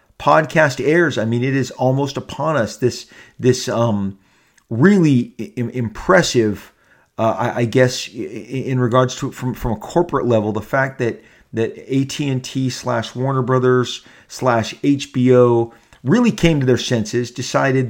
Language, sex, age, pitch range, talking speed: English, male, 40-59, 115-135 Hz, 150 wpm